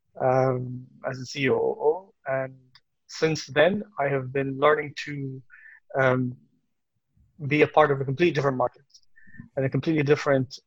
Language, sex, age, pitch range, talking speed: Arabic, male, 20-39, 135-150 Hz, 140 wpm